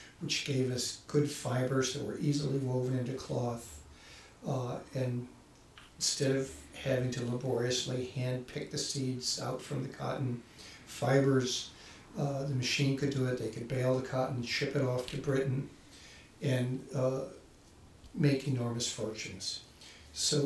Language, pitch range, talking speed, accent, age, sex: English, 125-140 Hz, 145 wpm, American, 60-79, male